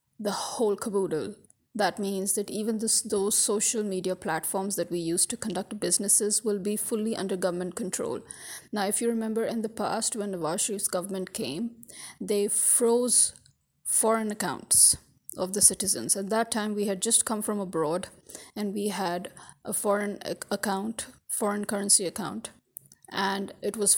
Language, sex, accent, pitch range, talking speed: English, female, Indian, 195-225 Hz, 160 wpm